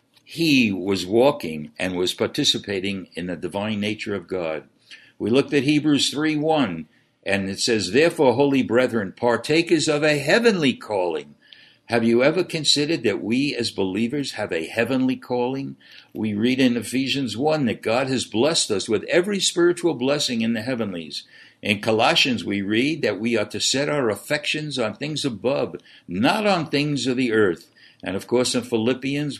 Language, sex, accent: English, male, American